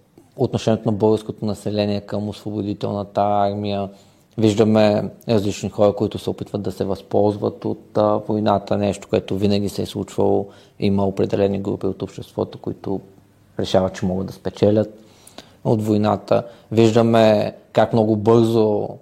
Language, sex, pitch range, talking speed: Bulgarian, male, 100-110 Hz, 135 wpm